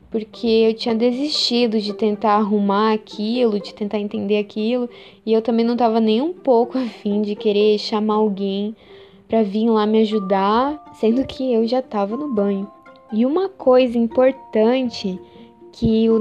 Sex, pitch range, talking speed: female, 215-265 Hz, 160 wpm